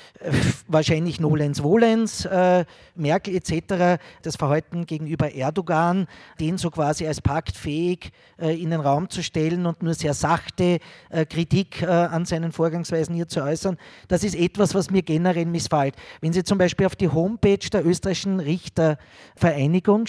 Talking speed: 150 wpm